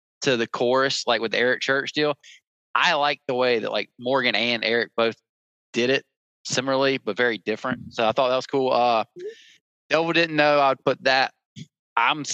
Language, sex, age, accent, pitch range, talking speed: English, male, 20-39, American, 110-145 Hz, 185 wpm